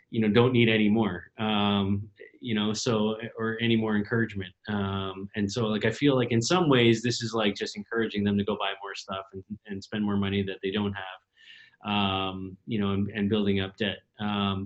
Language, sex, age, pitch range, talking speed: English, male, 30-49, 105-125 Hz, 215 wpm